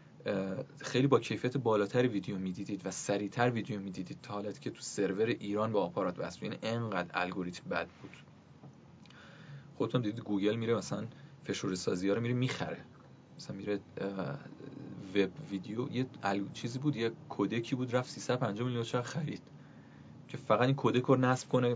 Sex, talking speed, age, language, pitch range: male, 150 wpm, 30-49, Persian, 100-135 Hz